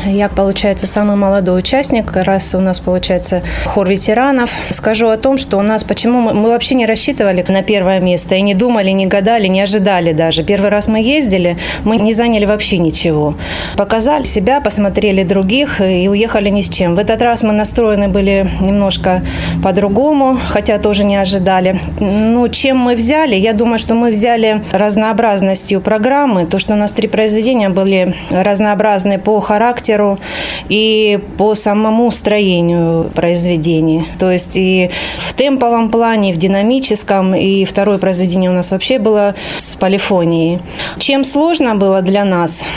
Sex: female